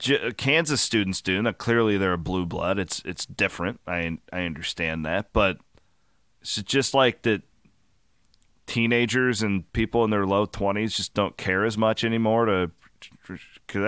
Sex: male